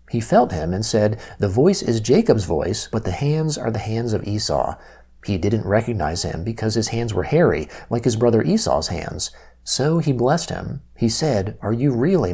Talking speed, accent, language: 200 wpm, American, English